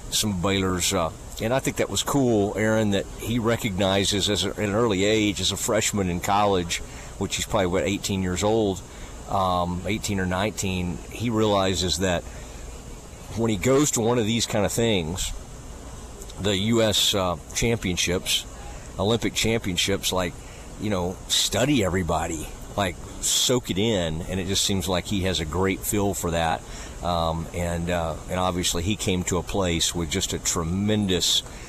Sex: male